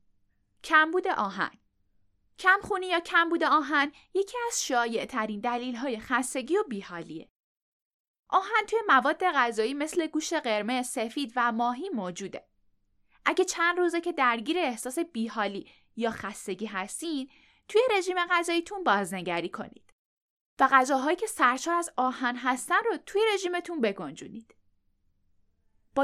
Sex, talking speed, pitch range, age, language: female, 125 wpm, 215-335 Hz, 10-29, Persian